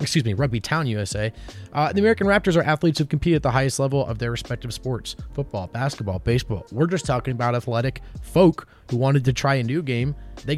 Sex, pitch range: male, 110-145 Hz